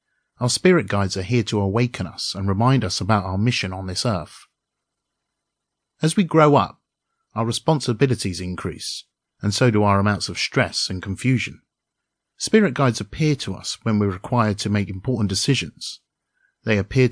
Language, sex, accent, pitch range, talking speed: English, male, British, 100-125 Hz, 170 wpm